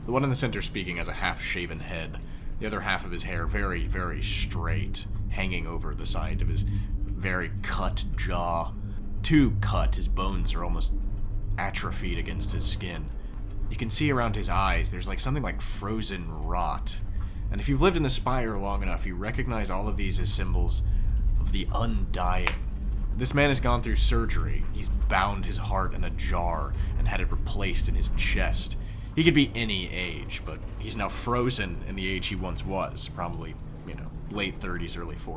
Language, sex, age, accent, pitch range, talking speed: English, male, 30-49, American, 90-105 Hz, 185 wpm